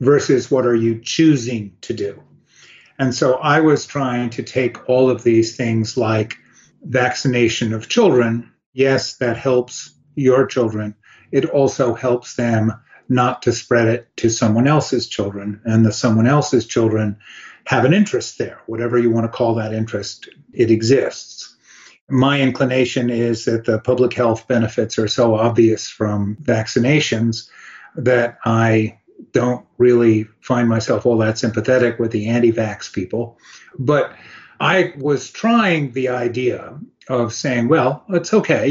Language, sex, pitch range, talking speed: English, male, 115-130 Hz, 145 wpm